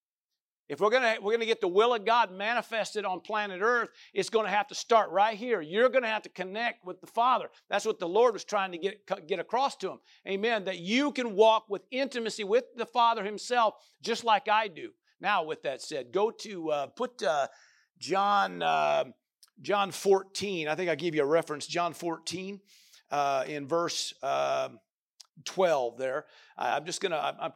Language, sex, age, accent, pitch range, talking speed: English, male, 50-69, American, 195-235 Hz, 195 wpm